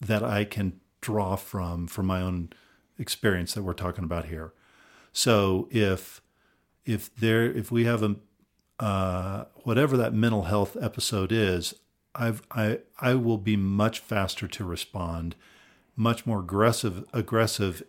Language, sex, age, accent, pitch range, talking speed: English, male, 50-69, American, 95-120 Hz, 140 wpm